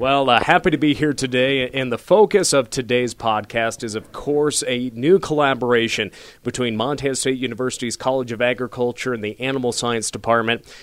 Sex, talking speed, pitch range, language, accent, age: male, 170 wpm, 115-135 Hz, English, American, 30-49